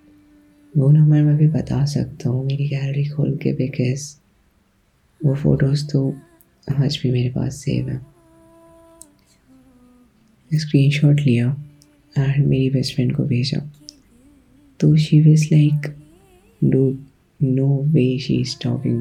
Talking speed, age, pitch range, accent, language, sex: 125 wpm, 20-39, 135-155 Hz, native, Hindi, female